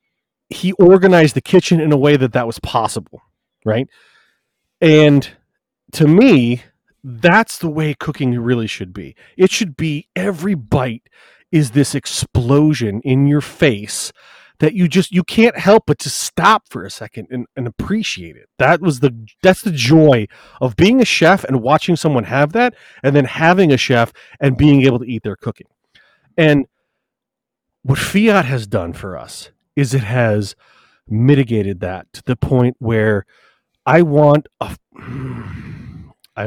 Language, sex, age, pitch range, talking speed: English, male, 30-49, 120-160 Hz, 160 wpm